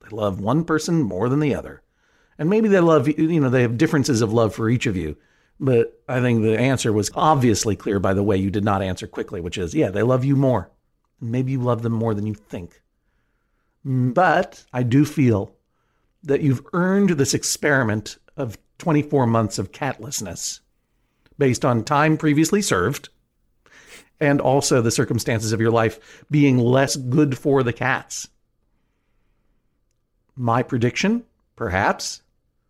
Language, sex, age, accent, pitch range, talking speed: English, male, 50-69, American, 110-145 Hz, 165 wpm